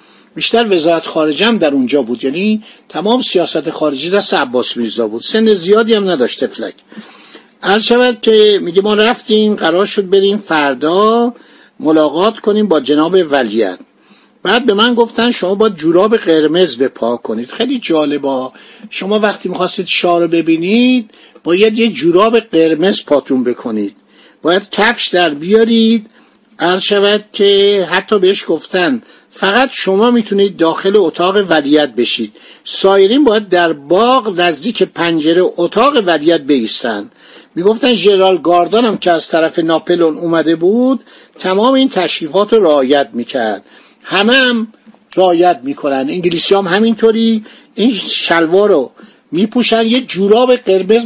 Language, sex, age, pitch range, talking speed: Persian, male, 60-79, 165-225 Hz, 130 wpm